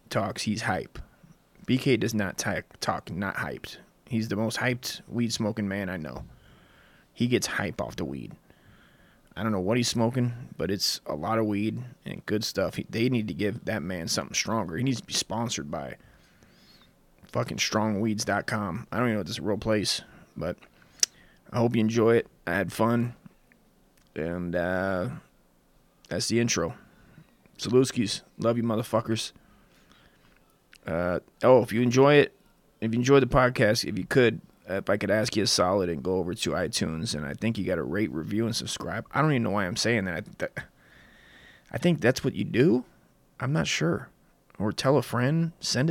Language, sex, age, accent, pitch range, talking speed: English, male, 20-39, American, 100-125 Hz, 185 wpm